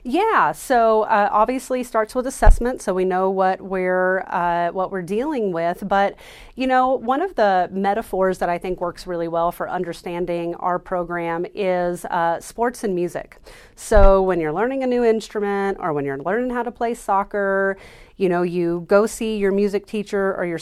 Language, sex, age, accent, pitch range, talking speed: English, female, 30-49, American, 180-220 Hz, 185 wpm